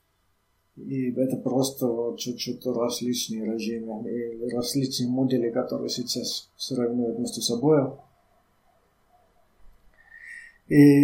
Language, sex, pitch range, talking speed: Finnish, male, 115-140 Hz, 85 wpm